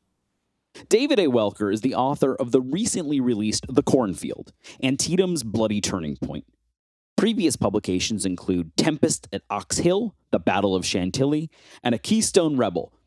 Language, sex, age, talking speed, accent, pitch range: English, male, 30-49, 140 wpm, American, 100-140 Hz